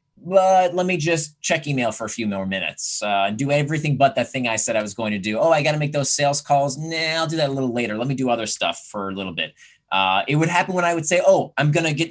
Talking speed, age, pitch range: 310 wpm, 30-49, 125-165 Hz